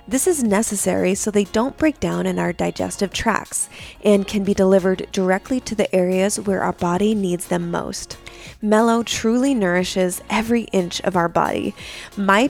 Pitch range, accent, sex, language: 185-220 Hz, American, female, English